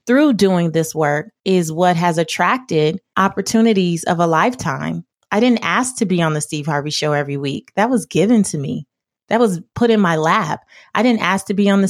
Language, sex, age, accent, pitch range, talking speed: English, female, 30-49, American, 180-235 Hz, 210 wpm